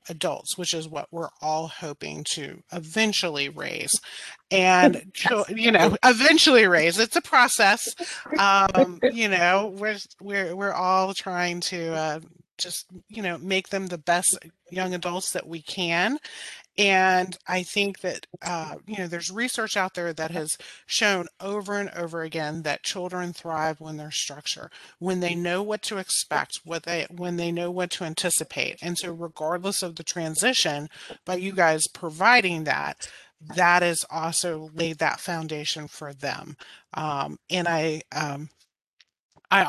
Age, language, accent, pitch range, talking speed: 30-49, English, American, 160-190 Hz, 155 wpm